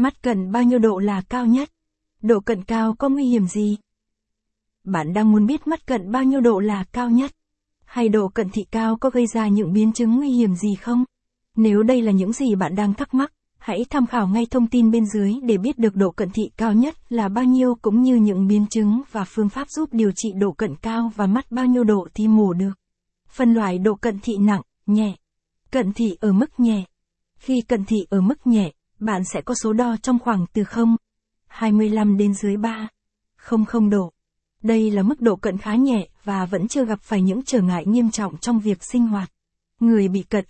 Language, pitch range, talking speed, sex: Vietnamese, 200-240 Hz, 220 wpm, female